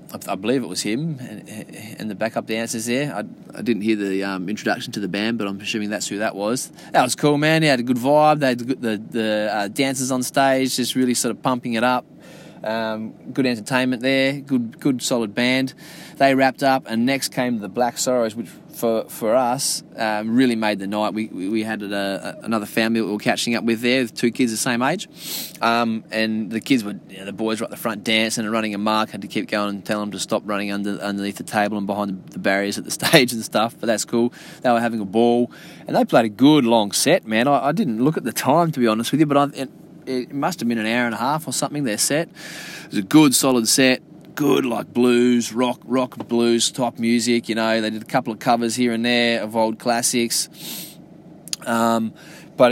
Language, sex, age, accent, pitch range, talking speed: English, male, 20-39, Australian, 110-130 Hz, 240 wpm